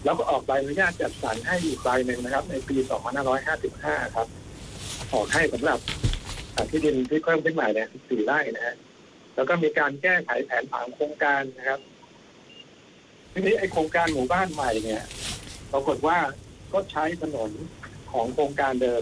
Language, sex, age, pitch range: Thai, male, 60-79, 115-155 Hz